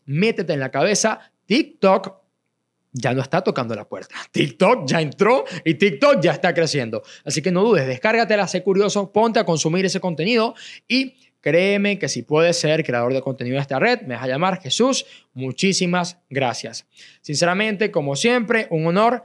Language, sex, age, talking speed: Spanish, male, 20-39, 170 wpm